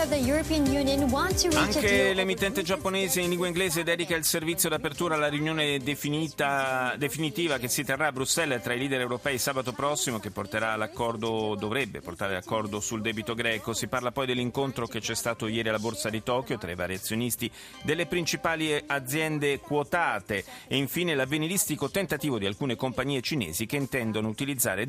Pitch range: 120-175 Hz